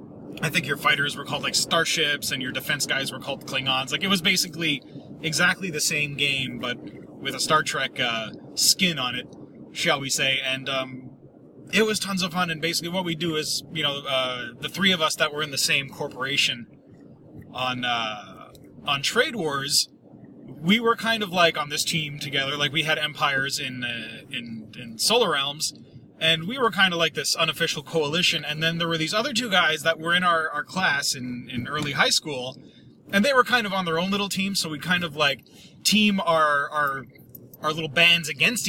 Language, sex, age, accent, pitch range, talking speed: English, male, 30-49, American, 135-170 Hz, 210 wpm